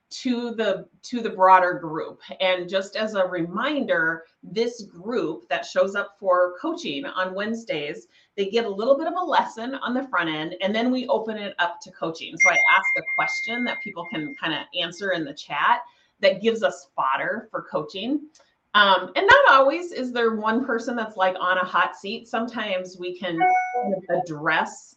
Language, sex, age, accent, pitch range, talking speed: English, female, 30-49, American, 170-240 Hz, 185 wpm